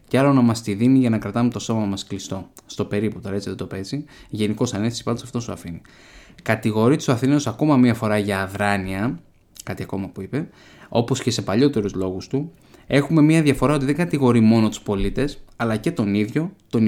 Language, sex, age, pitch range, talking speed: Greek, male, 20-39, 105-140 Hz, 205 wpm